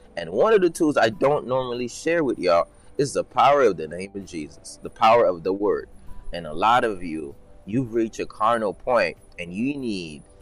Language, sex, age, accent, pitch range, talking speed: English, male, 20-39, American, 95-135 Hz, 215 wpm